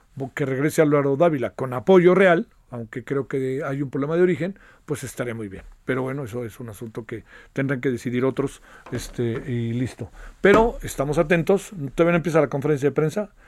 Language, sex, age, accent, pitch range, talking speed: Spanish, male, 50-69, Mexican, 130-165 Hz, 190 wpm